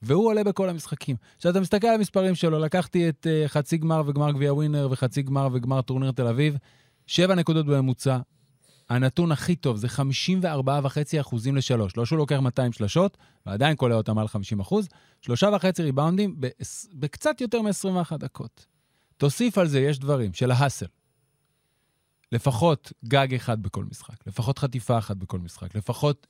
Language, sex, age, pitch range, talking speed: Hebrew, male, 30-49, 125-160 Hz, 160 wpm